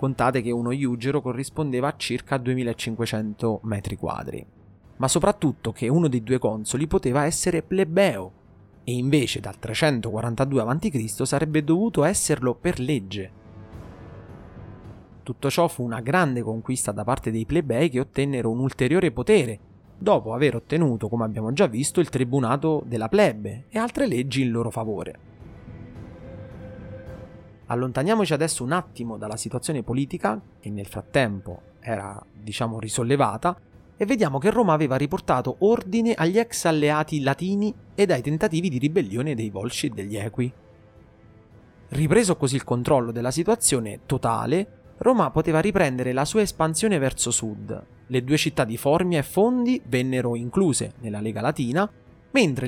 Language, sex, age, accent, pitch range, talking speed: Italian, male, 30-49, native, 110-160 Hz, 140 wpm